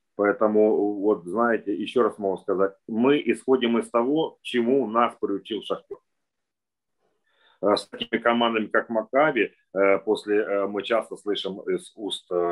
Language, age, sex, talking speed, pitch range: Ukrainian, 30-49, male, 125 wpm, 90-115 Hz